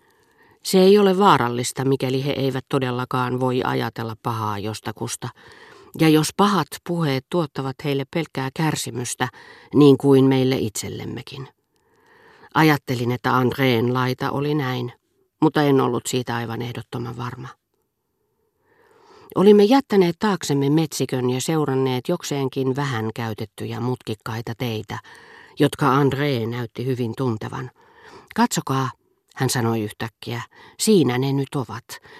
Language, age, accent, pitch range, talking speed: Finnish, 40-59, native, 120-165 Hz, 115 wpm